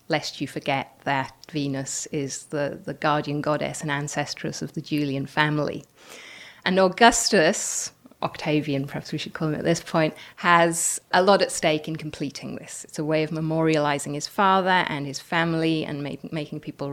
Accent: British